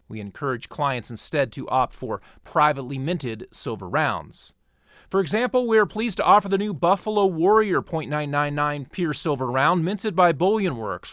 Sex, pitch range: male, 130-180 Hz